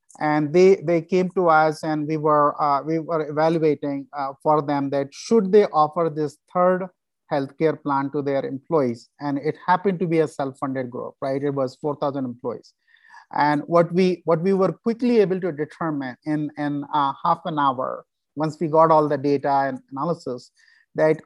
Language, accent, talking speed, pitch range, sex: English, Indian, 185 wpm, 145-190 Hz, male